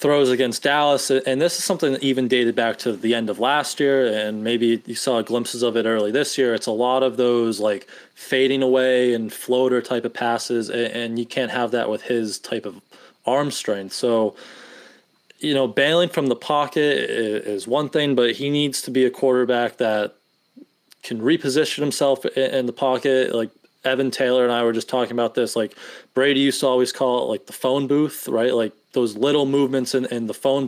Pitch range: 115-135 Hz